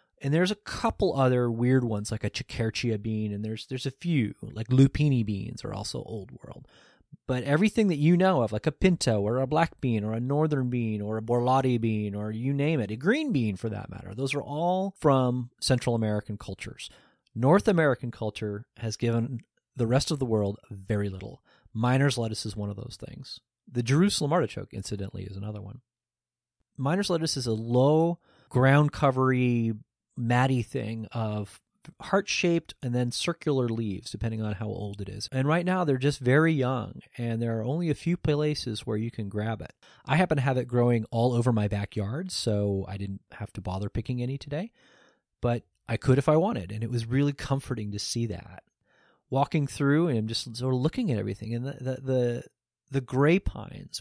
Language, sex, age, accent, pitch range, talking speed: English, male, 30-49, American, 110-140 Hz, 195 wpm